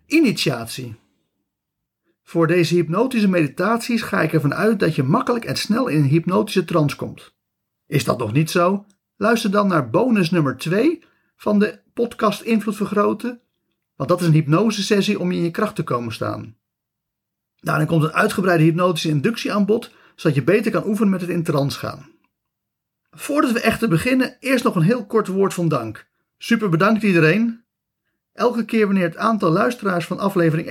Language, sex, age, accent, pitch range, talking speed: Dutch, male, 40-59, Dutch, 155-215 Hz, 175 wpm